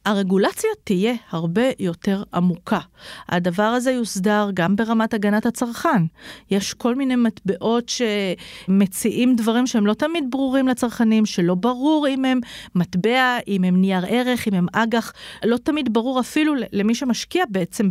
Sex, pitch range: female, 190-245 Hz